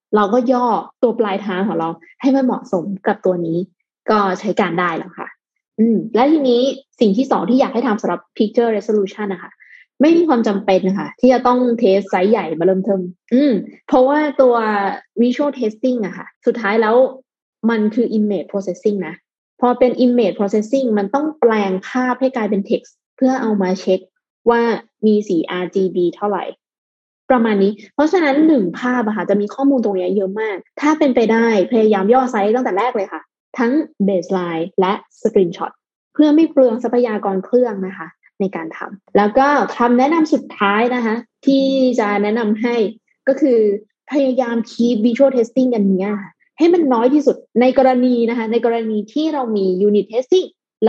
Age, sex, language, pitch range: 20-39, female, Thai, 200-255 Hz